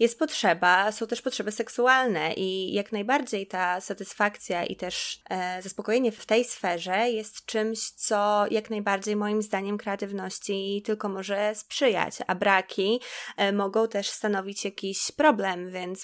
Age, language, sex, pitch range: 20-39, Polish, female, 180-215 Hz